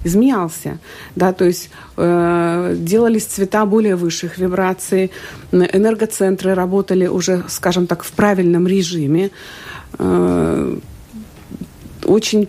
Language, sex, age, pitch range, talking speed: Russian, female, 50-69, 170-205 Hz, 95 wpm